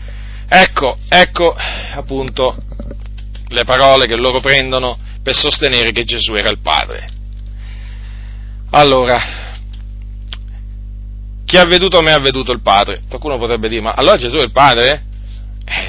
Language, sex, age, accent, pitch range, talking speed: Italian, male, 30-49, native, 100-135 Hz, 130 wpm